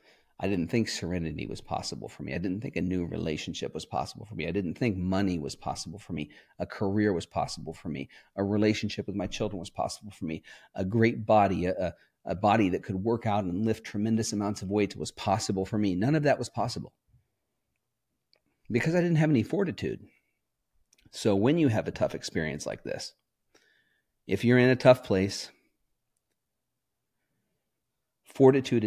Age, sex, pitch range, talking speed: 40-59, male, 95-120 Hz, 185 wpm